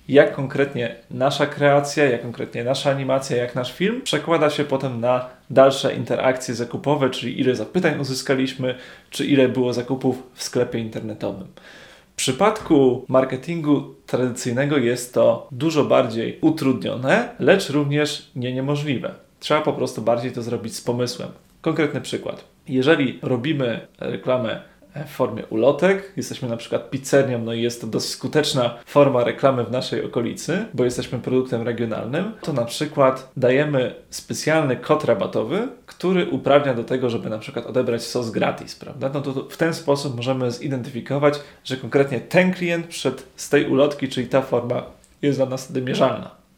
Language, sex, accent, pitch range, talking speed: Polish, male, native, 125-145 Hz, 150 wpm